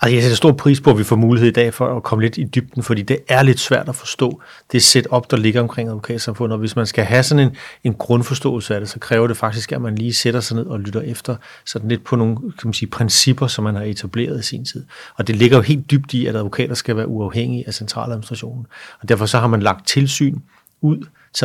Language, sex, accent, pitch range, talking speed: Danish, male, native, 110-125 Hz, 265 wpm